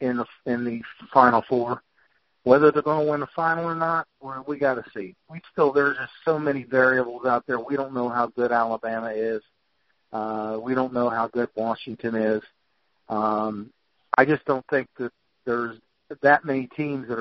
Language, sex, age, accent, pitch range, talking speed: English, male, 50-69, American, 115-140 Hz, 190 wpm